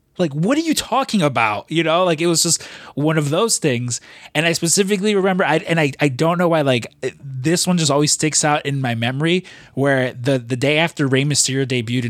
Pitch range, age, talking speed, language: 125-170 Hz, 20-39, 230 wpm, English